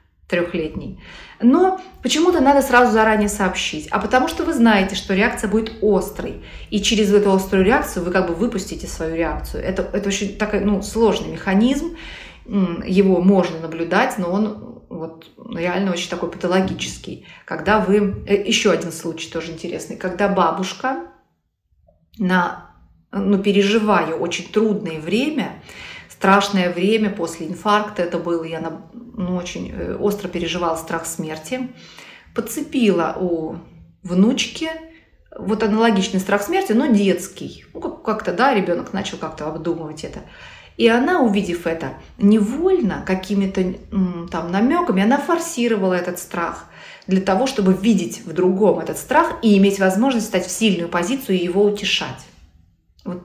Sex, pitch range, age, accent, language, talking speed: female, 175-220 Hz, 30-49, native, Russian, 135 wpm